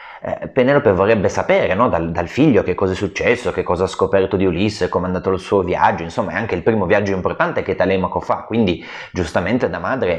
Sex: male